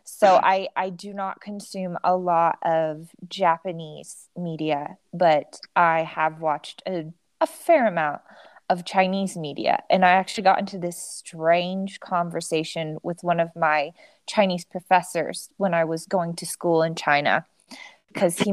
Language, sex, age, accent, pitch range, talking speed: English, female, 20-39, American, 165-200 Hz, 150 wpm